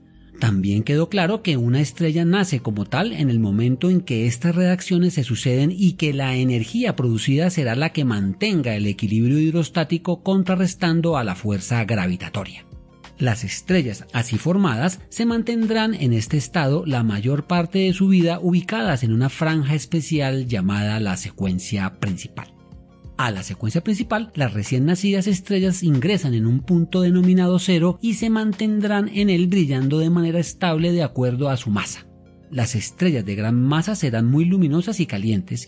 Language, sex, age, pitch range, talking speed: Spanish, male, 40-59, 115-180 Hz, 165 wpm